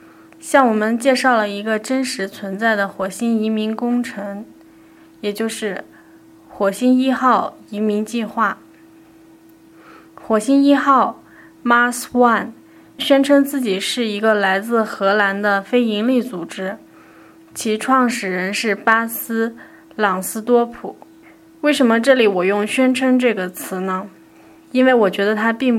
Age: 20-39